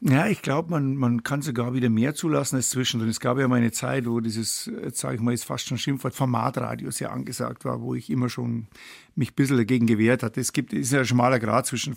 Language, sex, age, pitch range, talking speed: German, male, 50-69, 120-135 Hz, 250 wpm